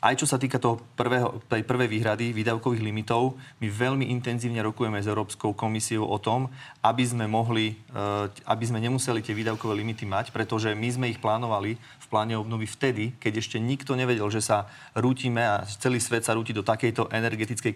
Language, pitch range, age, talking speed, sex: Slovak, 110-125 Hz, 30-49, 185 wpm, male